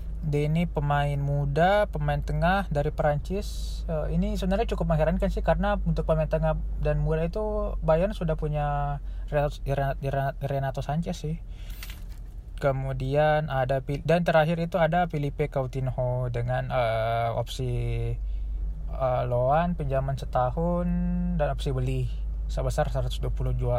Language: Indonesian